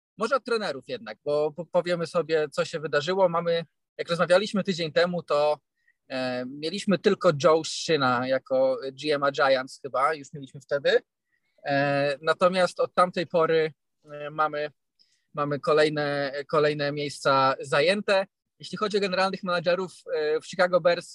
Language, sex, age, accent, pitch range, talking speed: Polish, male, 20-39, native, 150-185 Hz, 130 wpm